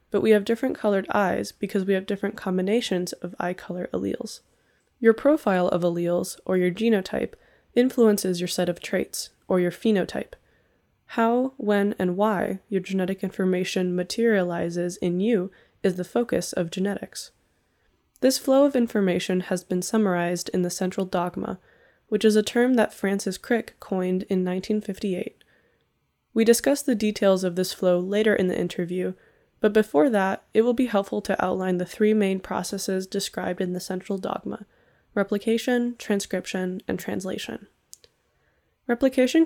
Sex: female